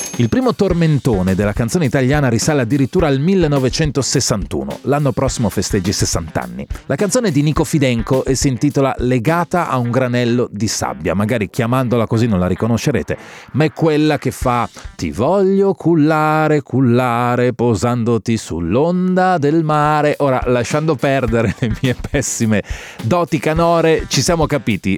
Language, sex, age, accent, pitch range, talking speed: Italian, male, 30-49, native, 115-155 Hz, 145 wpm